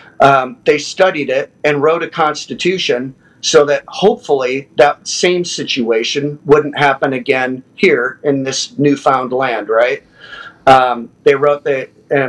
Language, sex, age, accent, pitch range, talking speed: English, male, 40-59, American, 130-160 Hz, 135 wpm